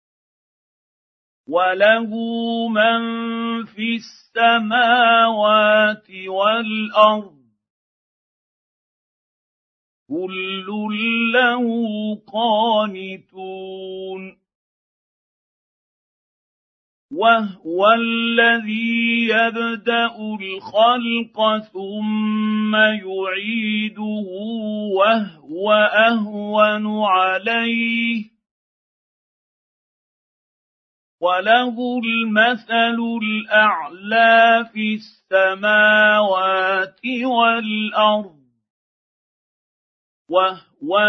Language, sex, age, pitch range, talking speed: Arabic, male, 50-69, 195-230 Hz, 35 wpm